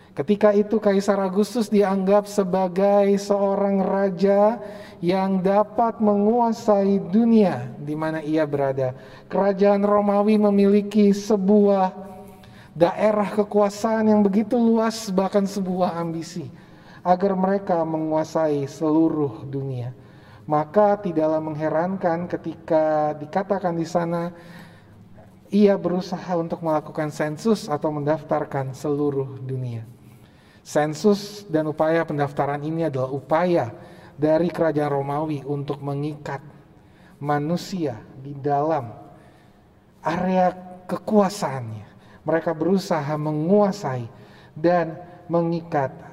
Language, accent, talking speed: Indonesian, native, 90 wpm